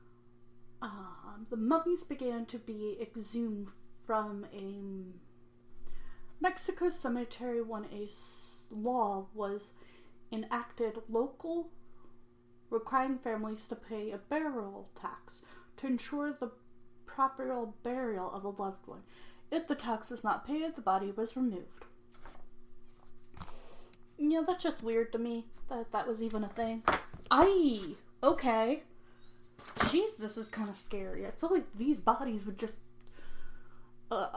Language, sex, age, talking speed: English, female, 30-49, 125 wpm